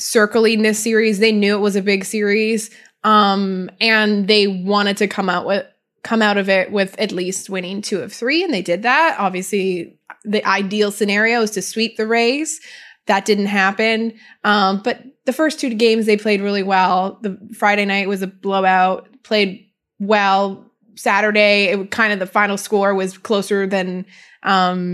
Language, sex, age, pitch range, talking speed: English, female, 20-39, 195-225 Hz, 180 wpm